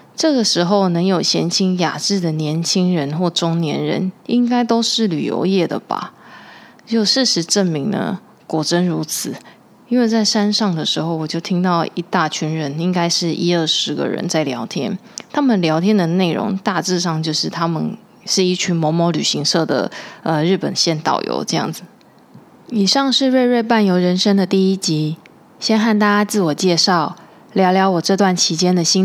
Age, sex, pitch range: 20-39, female, 160-200 Hz